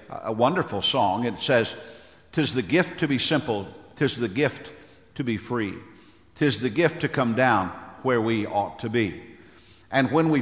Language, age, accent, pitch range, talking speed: English, 50-69, American, 110-135 Hz, 180 wpm